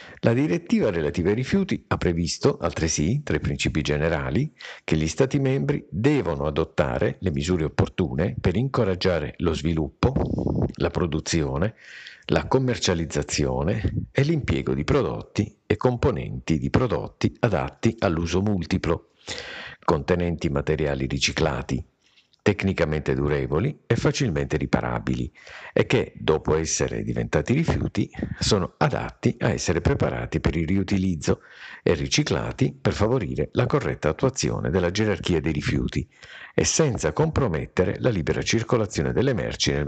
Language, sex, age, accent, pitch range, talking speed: Italian, male, 50-69, native, 75-105 Hz, 125 wpm